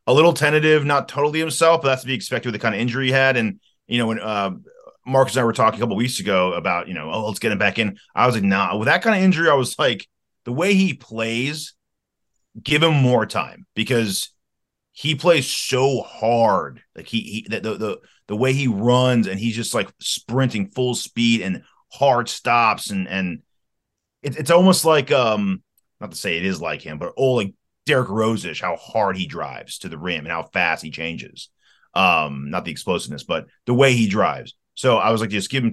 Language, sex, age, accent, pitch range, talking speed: English, male, 30-49, American, 95-130 Hz, 230 wpm